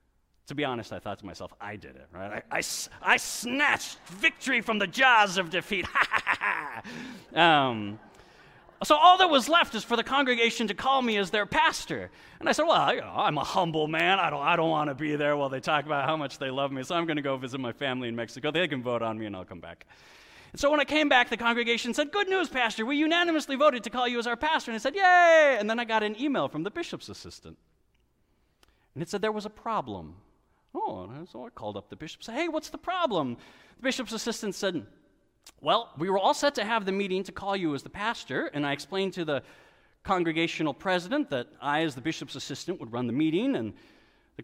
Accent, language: American, English